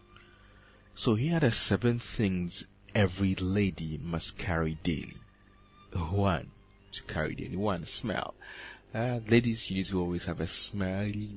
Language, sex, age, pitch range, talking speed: English, male, 30-49, 90-105 Hz, 135 wpm